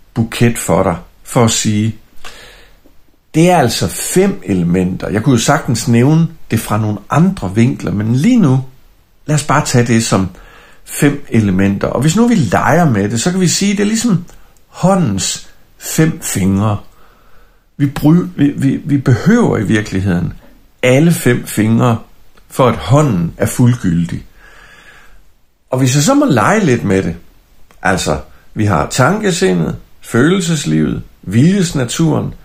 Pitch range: 105-155 Hz